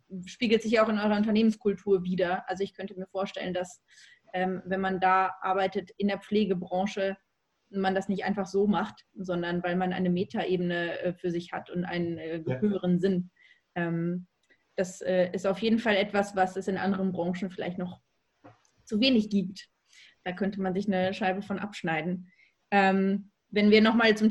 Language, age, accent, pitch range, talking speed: German, 20-39, German, 190-220 Hz, 165 wpm